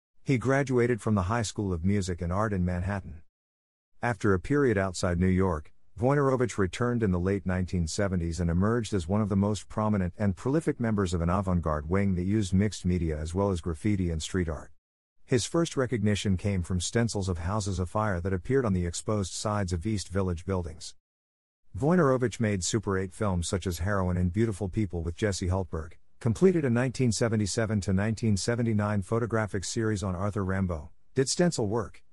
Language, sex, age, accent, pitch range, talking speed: English, male, 50-69, American, 90-115 Hz, 175 wpm